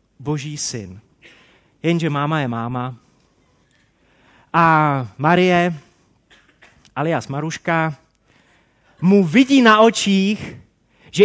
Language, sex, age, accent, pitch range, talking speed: Czech, male, 30-49, native, 150-215 Hz, 80 wpm